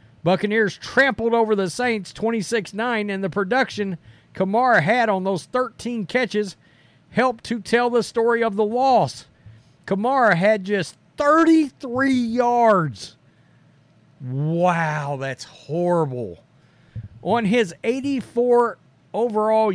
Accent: American